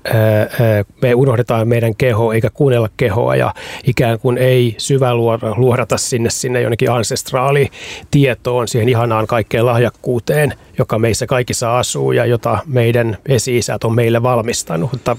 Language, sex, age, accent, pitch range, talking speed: Finnish, male, 30-49, native, 115-135 Hz, 125 wpm